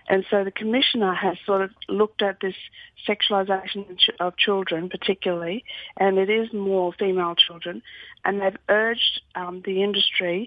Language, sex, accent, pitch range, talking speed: English, female, Australian, 185-210 Hz, 150 wpm